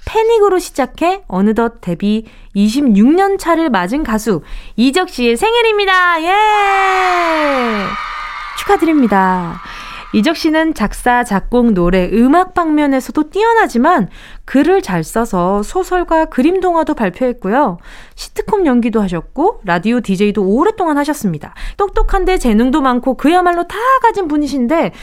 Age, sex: 20-39, female